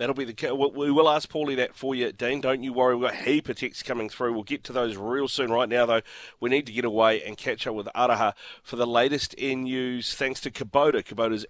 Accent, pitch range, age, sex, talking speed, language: Australian, 110-145 Hz, 30-49, male, 260 wpm, English